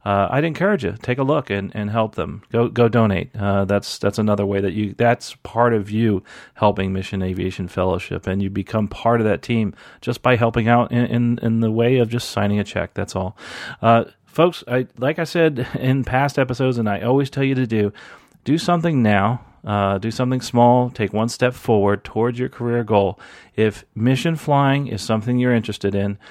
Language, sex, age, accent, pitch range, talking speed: English, male, 40-59, American, 100-125 Hz, 210 wpm